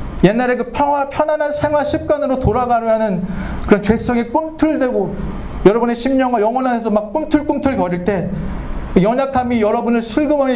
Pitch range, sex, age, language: 130-205 Hz, male, 40-59, Korean